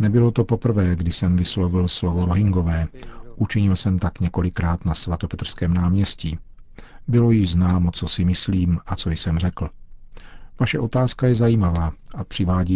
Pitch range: 85-105 Hz